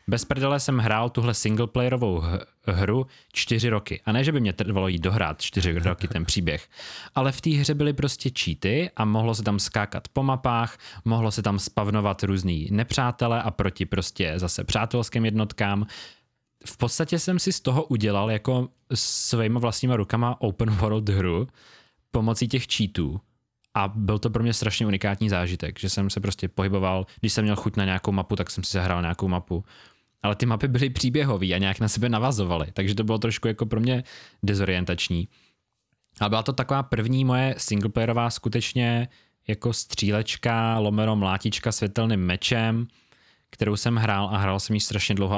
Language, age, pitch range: Czech, 20-39, 100-120 Hz